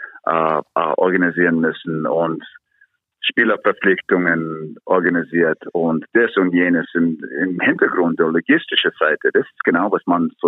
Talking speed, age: 115 wpm, 50-69